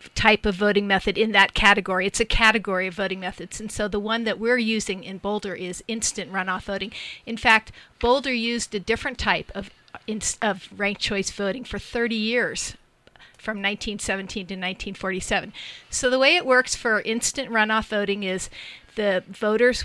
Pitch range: 200-240 Hz